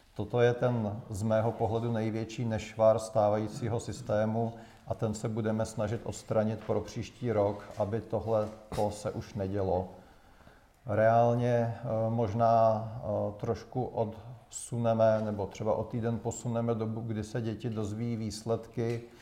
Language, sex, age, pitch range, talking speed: Czech, male, 40-59, 110-115 Hz, 125 wpm